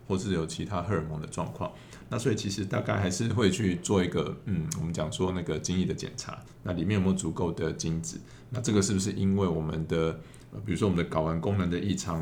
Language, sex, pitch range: Chinese, male, 85-105 Hz